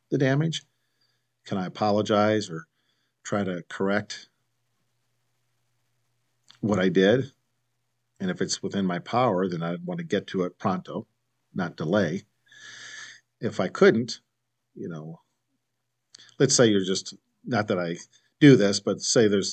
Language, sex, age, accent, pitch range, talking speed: English, male, 50-69, American, 95-120 Hz, 140 wpm